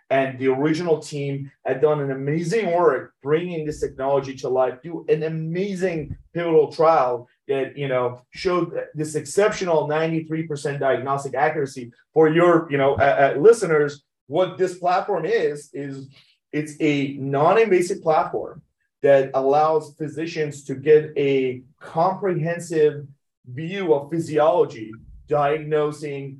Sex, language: male, English